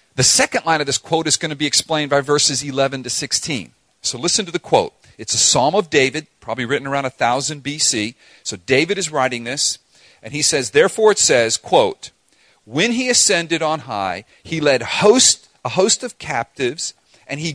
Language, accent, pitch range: English, American, 130-175 Hz